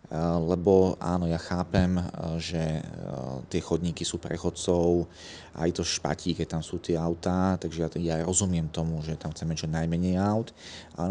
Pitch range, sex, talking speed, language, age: 80-90 Hz, male, 155 wpm, Slovak, 30-49